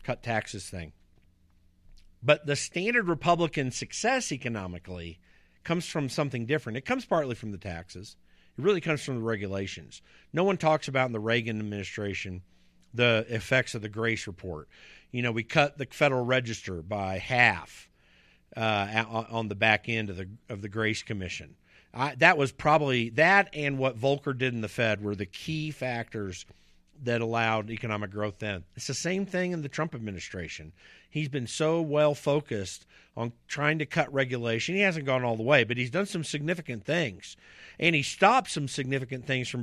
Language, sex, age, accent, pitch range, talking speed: English, male, 50-69, American, 105-150 Hz, 175 wpm